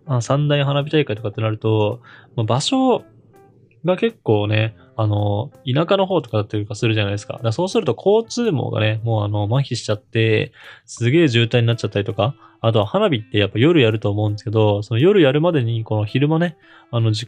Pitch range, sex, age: 105-130 Hz, male, 20-39